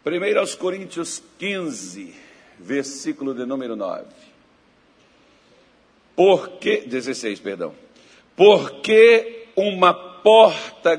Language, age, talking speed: Portuguese, 60-79, 75 wpm